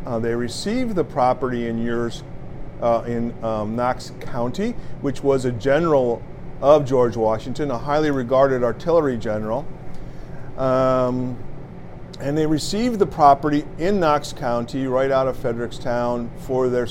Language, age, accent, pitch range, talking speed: English, 50-69, American, 125-155 Hz, 140 wpm